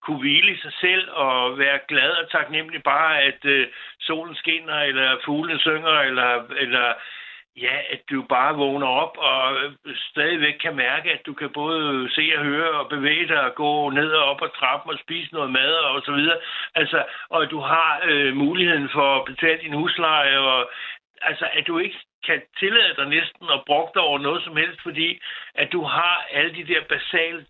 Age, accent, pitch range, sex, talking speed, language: 60-79, native, 140-165 Hz, male, 195 wpm, Danish